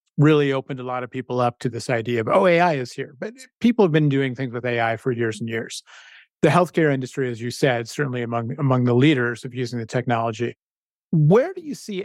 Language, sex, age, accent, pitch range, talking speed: English, male, 30-49, American, 125-145 Hz, 230 wpm